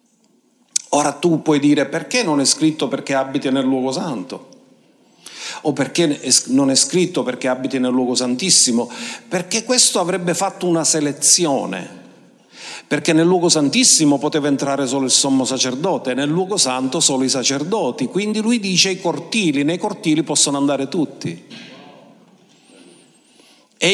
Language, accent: Italian, native